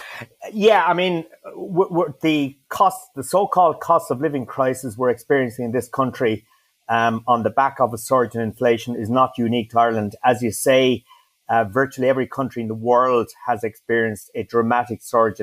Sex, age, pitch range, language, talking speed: male, 30-49, 110-125 Hz, English, 180 wpm